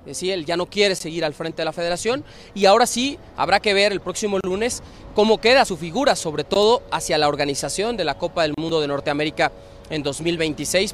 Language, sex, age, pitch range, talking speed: Spanish, male, 30-49, 155-210 Hz, 215 wpm